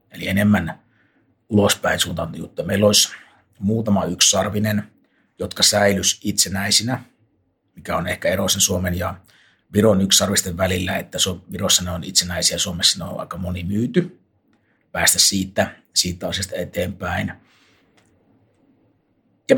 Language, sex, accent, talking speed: Finnish, male, native, 115 wpm